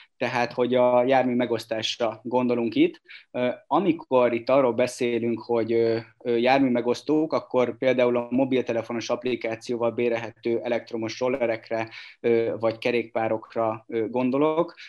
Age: 20-39